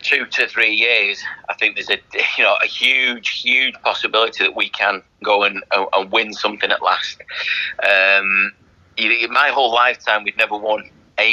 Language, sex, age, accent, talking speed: English, male, 30-49, British, 165 wpm